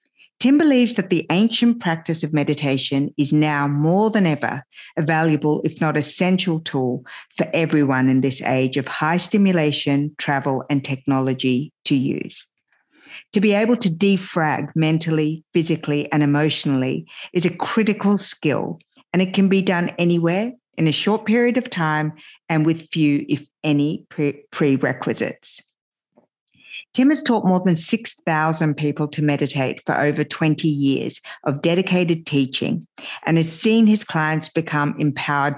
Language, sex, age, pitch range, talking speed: English, female, 50-69, 145-185 Hz, 145 wpm